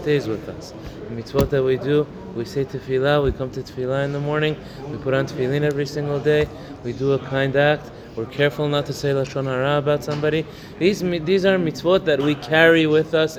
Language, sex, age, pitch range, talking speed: English, male, 20-39, 120-150 Hz, 215 wpm